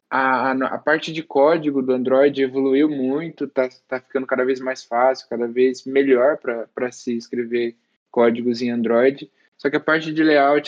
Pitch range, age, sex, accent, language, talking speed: 125-145 Hz, 10-29, male, Brazilian, Portuguese, 170 wpm